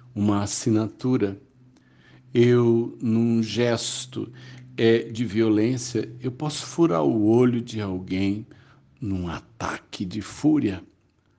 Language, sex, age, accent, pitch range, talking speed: Portuguese, male, 60-79, Brazilian, 110-145 Hz, 95 wpm